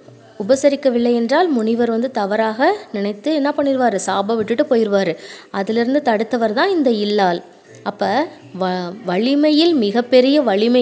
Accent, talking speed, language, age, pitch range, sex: Indian, 100 wpm, English, 20-39, 210-280 Hz, female